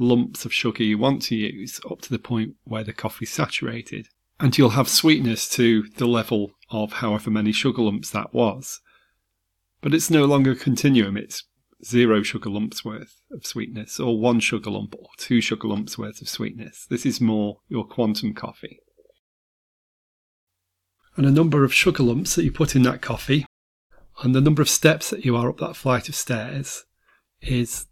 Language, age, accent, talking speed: English, 30-49, British, 185 wpm